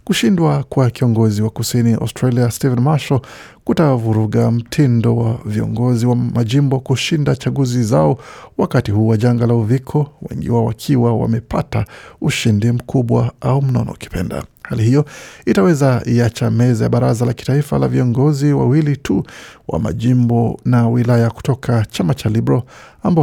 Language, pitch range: Swahili, 115-140 Hz